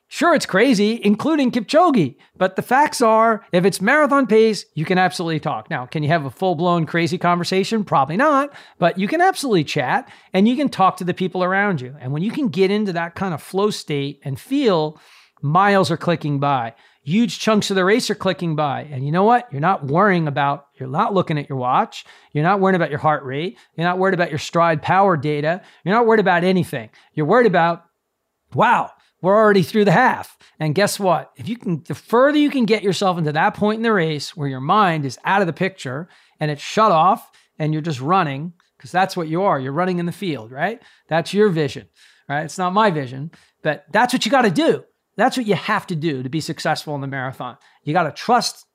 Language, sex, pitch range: English, male, 155-210 Hz